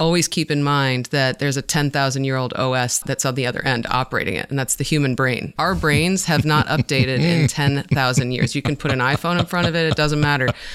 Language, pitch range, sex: English, 130-155 Hz, female